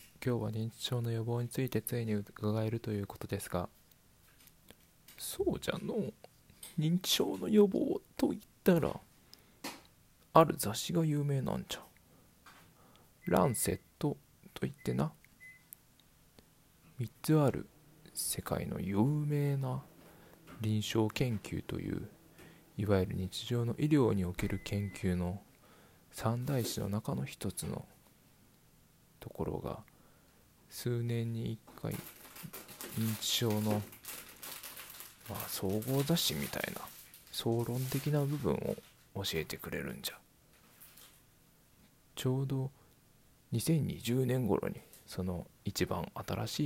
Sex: male